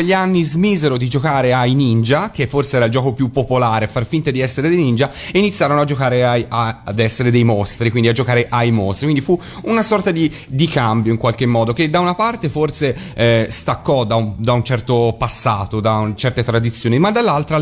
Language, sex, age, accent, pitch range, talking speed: Italian, male, 30-49, native, 115-145 Hz, 220 wpm